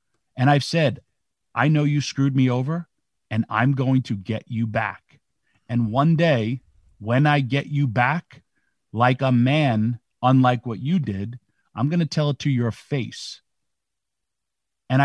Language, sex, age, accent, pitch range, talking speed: English, male, 40-59, American, 120-155 Hz, 160 wpm